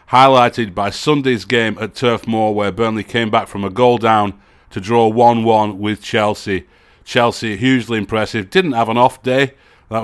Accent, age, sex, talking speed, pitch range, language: British, 30-49, male, 175 wpm, 100-115 Hz, English